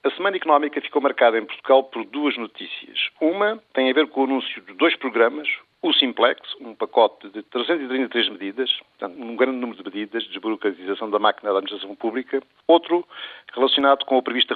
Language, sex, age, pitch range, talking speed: Portuguese, male, 50-69, 115-145 Hz, 185 wpm